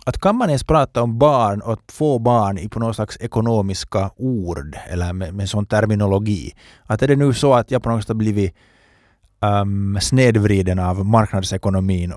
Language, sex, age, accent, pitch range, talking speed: Finnish, male, 20-39, native, 100-125 Hz, 185 wpm